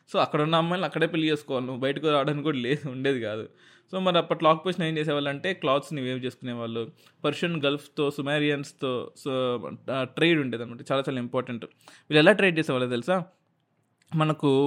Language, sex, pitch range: Telugu, male, 125-155 Hz